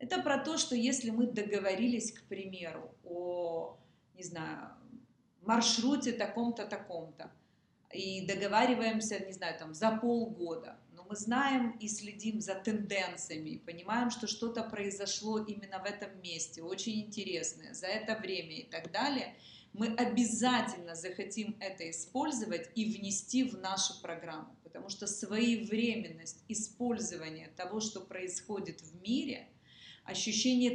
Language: Russian